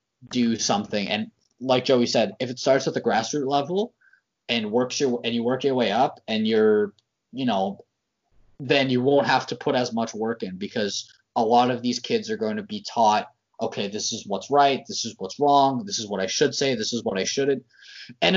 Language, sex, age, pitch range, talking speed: English, male, 20-39, 115-155 Hz, 220 wpm